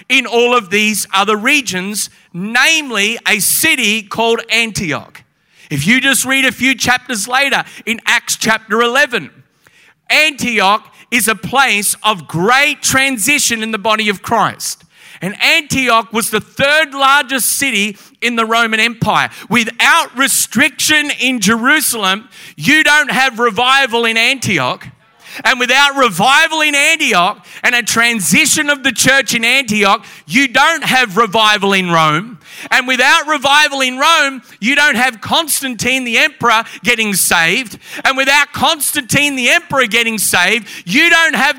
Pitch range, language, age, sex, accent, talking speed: 220-270 Hz, English, 40-59, male, Australian, 140 wpm